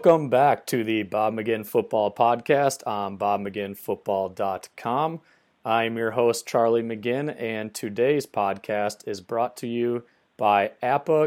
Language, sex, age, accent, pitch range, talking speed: English, male, 30-49, American, 105-130 Hz, 130 wpm